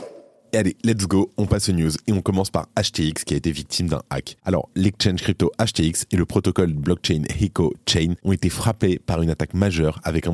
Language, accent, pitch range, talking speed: French, French, 80-100 Hz, 215 wpm